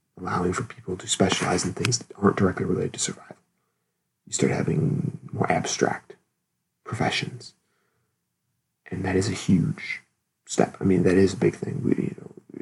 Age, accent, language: 40-59, American, English